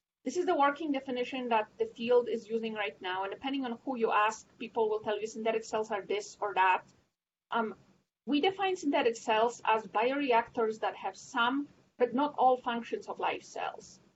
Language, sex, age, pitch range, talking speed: English, female, 40-59, 225-280 Hz, 190 wpm